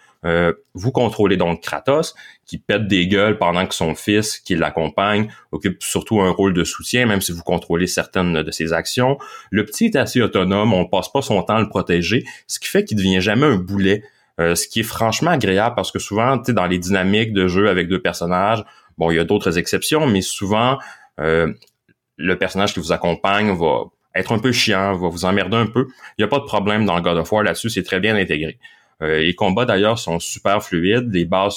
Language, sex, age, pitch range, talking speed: French, male, 30-49, 85-110 Hz, 220 wpm